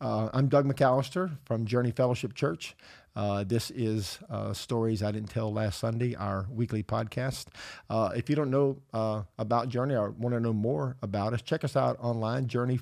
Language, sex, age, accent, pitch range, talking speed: English, male, 50-69, American, 110-125 Hz, 190 wpm